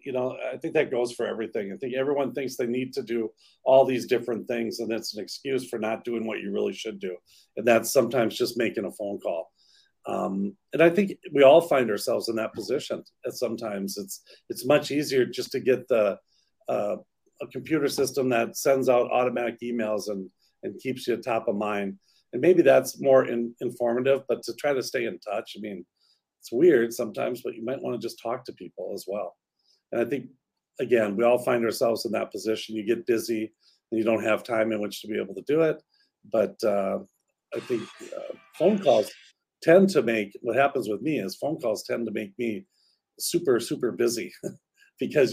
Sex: male